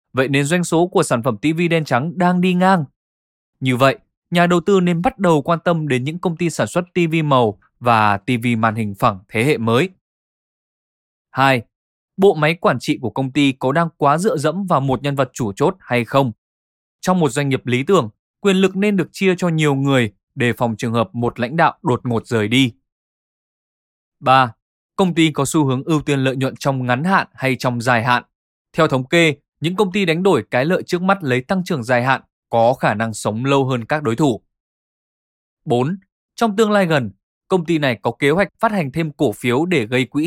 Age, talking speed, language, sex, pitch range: 20-39, 220 wpm, Vietnamese, male, 125-170 Hz